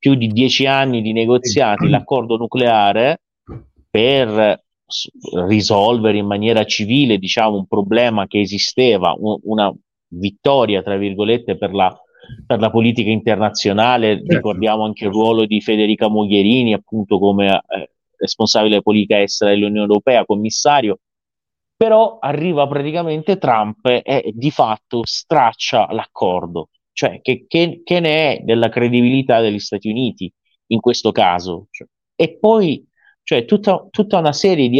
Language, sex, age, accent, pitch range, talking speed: Italian, male, 30-49, native, 105-145 Hz, 130 wpm